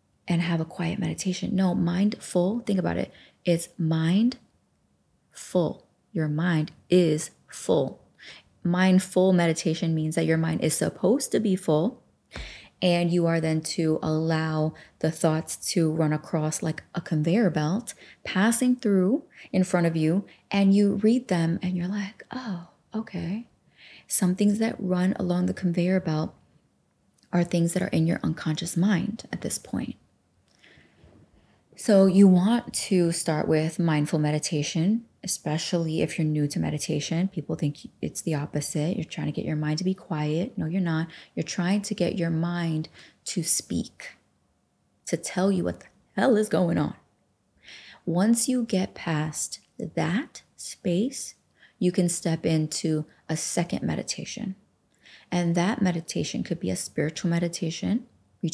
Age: 20-39